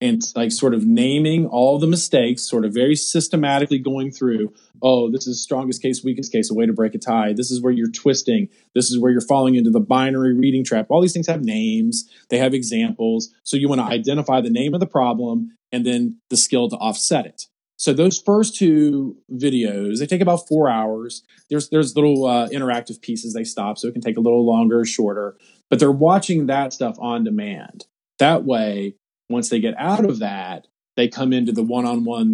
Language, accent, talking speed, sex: English, American, 215 wpm, male